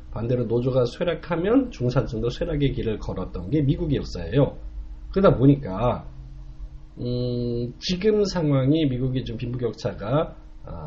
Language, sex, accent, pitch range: Korean, male, native, 95-140 Hz